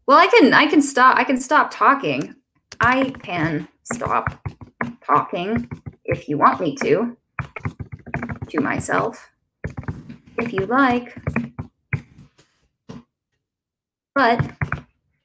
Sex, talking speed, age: female, 100 wpm, 20-39